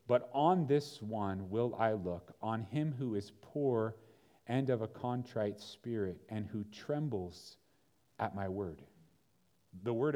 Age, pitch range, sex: 40-59, 105-130 Hz, male